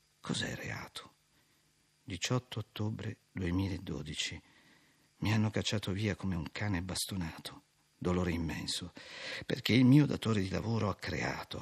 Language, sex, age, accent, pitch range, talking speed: Italian, male, 50-69, native, 85-110 Hz, 125 wpm